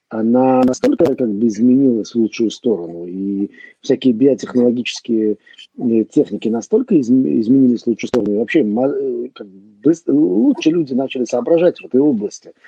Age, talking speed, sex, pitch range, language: 50-69, 140 wpm, male, 120-180 Hz, English